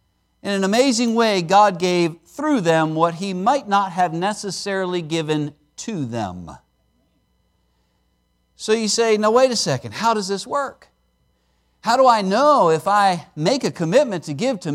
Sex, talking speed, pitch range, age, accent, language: male, 165 wpm, 150-230 Hz, 50-69, American, English